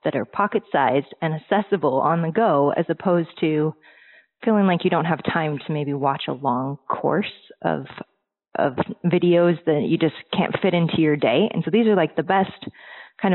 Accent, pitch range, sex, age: American, 155-185 Hz, female, 20-39